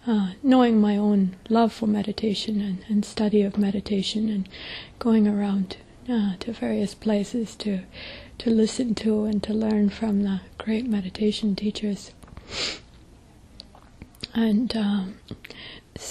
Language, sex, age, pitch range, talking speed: English, female, 30-49, 200-225 Hz, 125 wpm